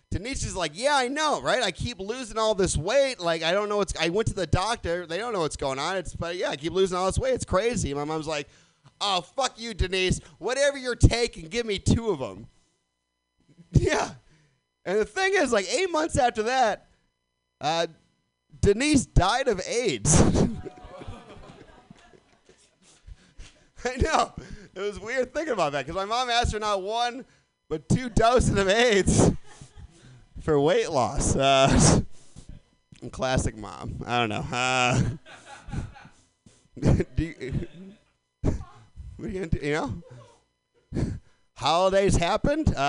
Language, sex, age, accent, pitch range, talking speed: English, male, 30-49, American, 135-215 Hz, 150 wpm